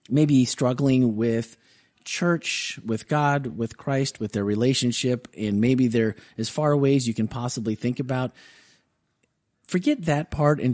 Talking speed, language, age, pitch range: 150 wpm, English, 30-49, 110-130 Hz